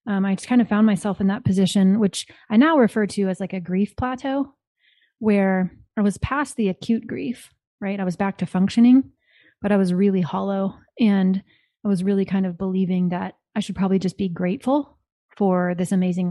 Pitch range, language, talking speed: 185-225 Hz, English, 200 wpm